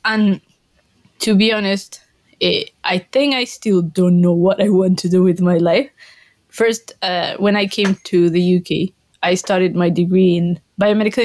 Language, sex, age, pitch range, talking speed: English, female, 20-39, 180-210 Hz, 170 wpm